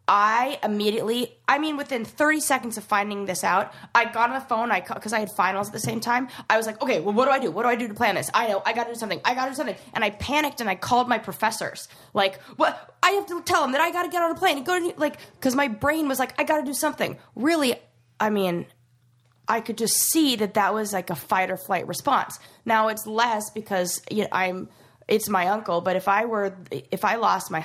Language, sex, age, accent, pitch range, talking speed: English, female, 20-39, American, 200-265 Hz, 255 wpm